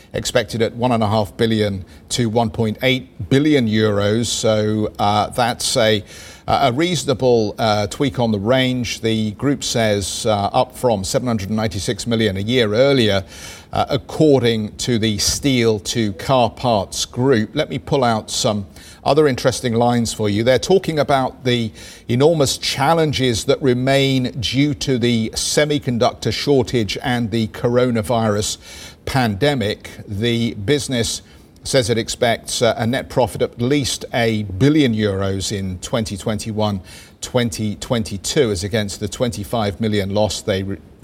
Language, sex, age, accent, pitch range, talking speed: English, male, 50-69, British, 105-125 Hz, 135 wpm